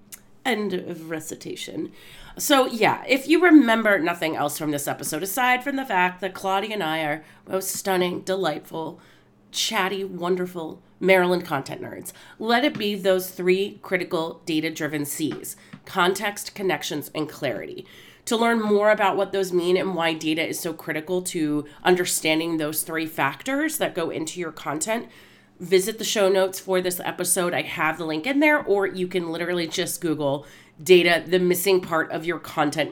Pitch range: 170-215 Hz